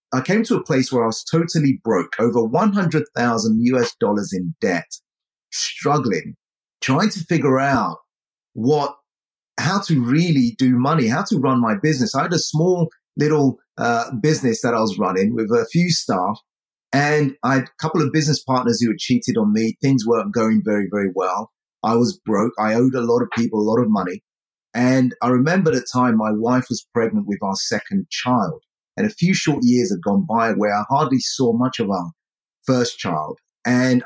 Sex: male